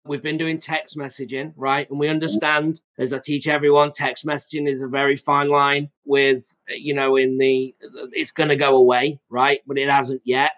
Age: 30-49